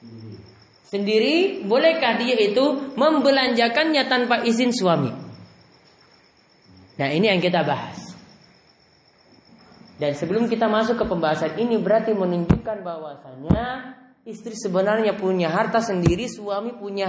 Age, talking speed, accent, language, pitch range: 30-49, 105 wpm, Indonesian, English, 175-235 Hz